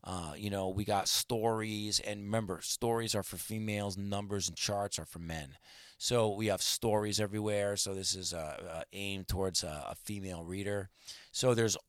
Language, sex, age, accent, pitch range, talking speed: English, male, 30-49, American, 95-115 Hz, 180 wpm